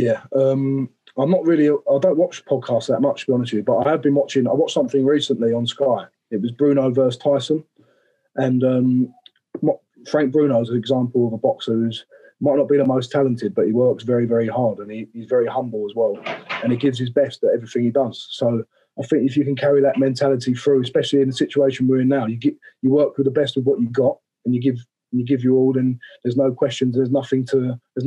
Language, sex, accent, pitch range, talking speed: English, male, British, 115-135 Hz, 245 wpm